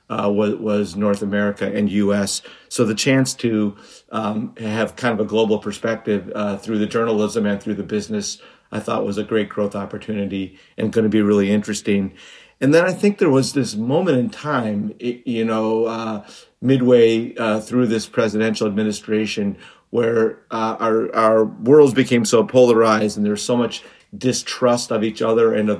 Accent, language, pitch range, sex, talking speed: American, English, 105-115 Hz, male, 180 wpm